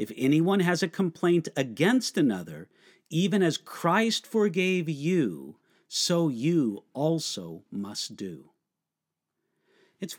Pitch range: 150-210 Hz